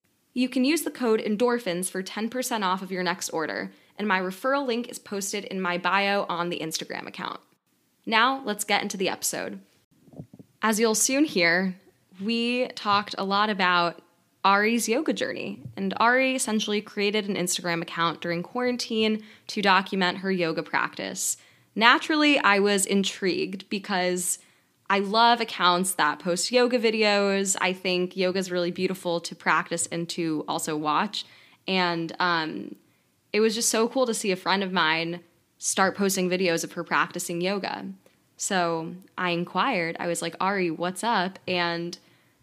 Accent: American